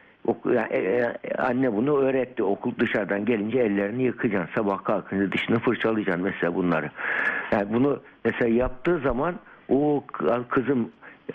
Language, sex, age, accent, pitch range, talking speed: Turkish, male, 60-79, native, 105-130 Hz, 110 wpm